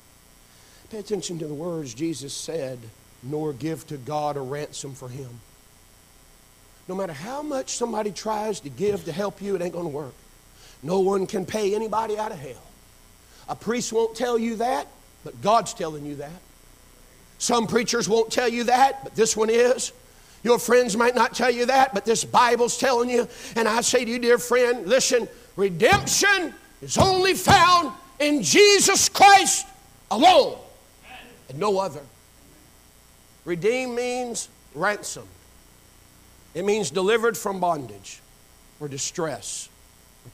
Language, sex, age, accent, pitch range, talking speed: English, male, 50-69, American, 145-235 Hz, 150 wpm